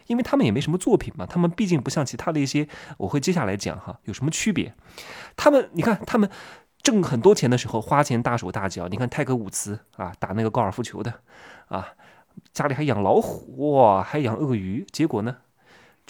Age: 20-39